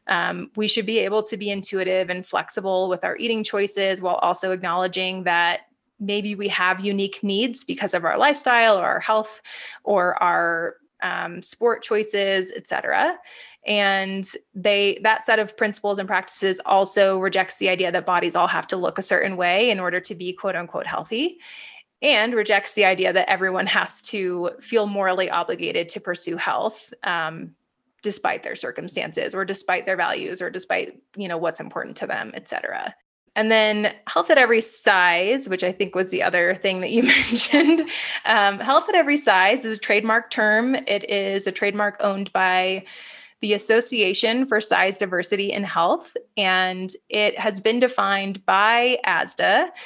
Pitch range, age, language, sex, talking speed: 185-225 Hz, 20-39, English, female, 170 wpm